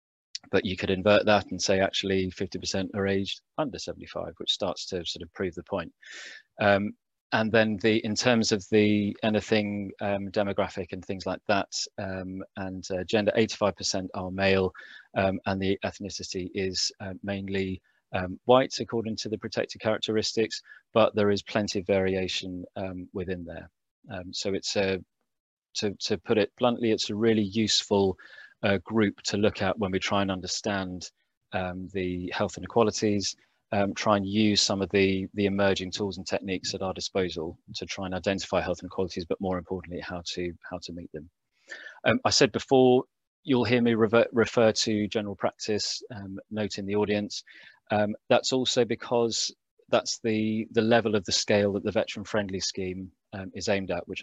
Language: English